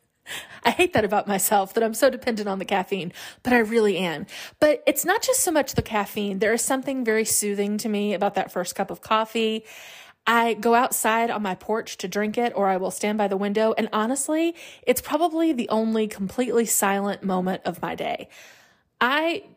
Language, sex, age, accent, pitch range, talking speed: English, female, 20-39, American, 195-245 Hz, 200 wpm